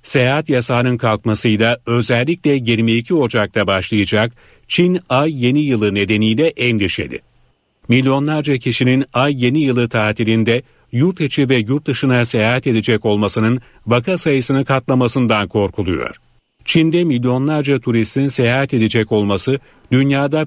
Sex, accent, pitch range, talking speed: male, native, 110-135 Hz, 110 wpm